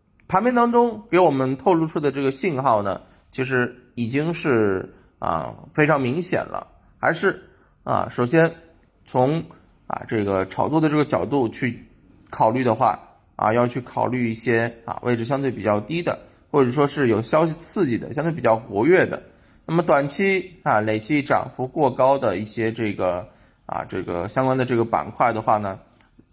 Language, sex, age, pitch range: Chinese, male, 20-39, 110-145 Hz